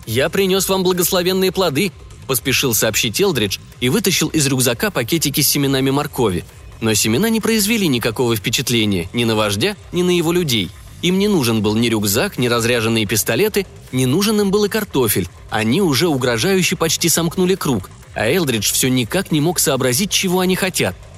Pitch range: 115-170 Hz